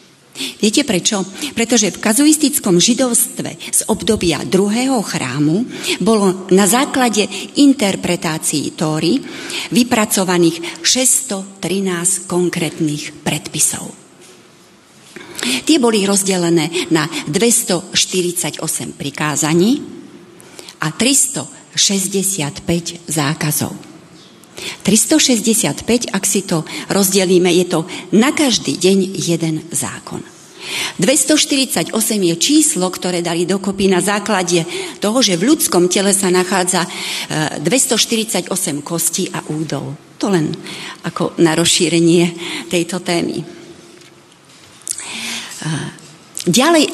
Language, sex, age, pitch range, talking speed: Slovak, female, 40-59, 170-235 Hz, 85 wpm